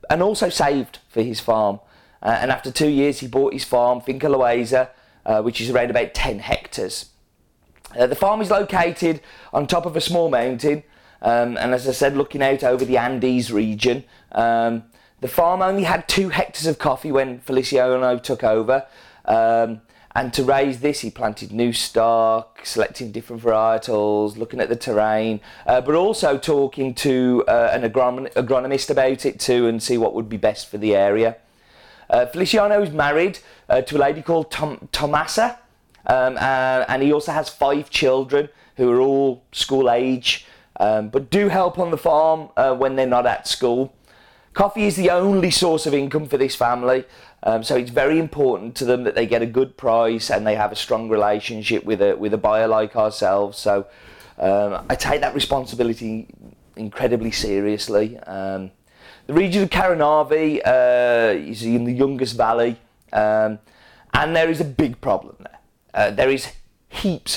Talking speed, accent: 175 wpm, British